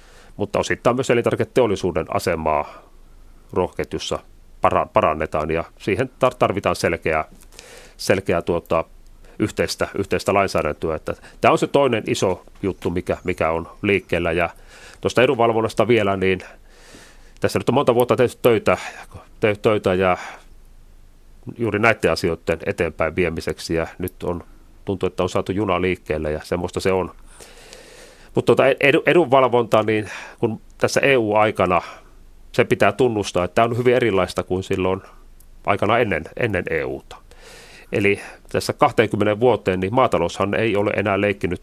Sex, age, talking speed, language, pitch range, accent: male, 40-59, 130 wpm, Finnish, 90-110 Hz, native